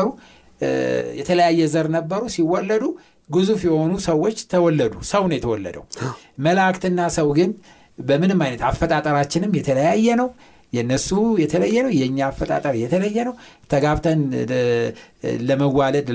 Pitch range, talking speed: 140-200 Hz, 105 wpm